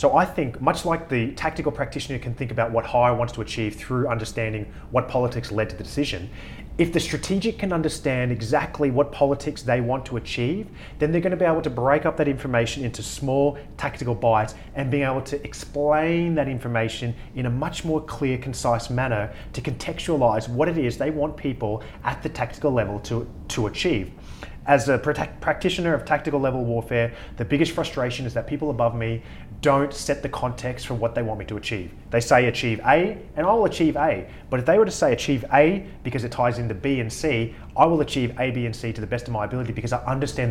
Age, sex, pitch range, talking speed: 30-49, male, 115-150 Hz, 215 wpm